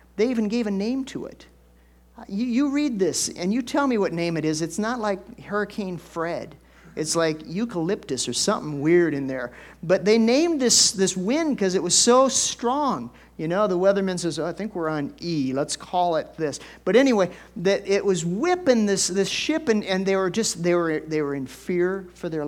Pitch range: 150-220 Hz